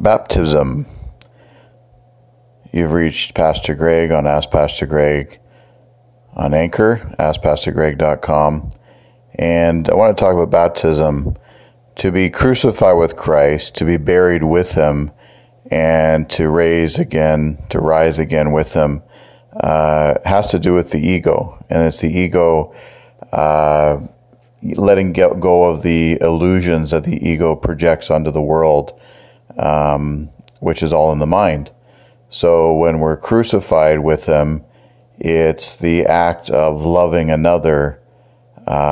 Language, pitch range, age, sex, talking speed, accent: English, 75-85 Hz, 40-59, male, 125 wpm, American